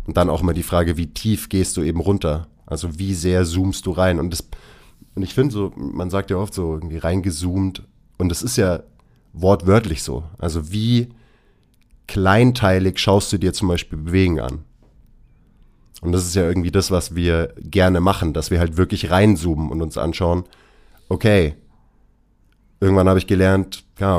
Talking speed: 175 wpm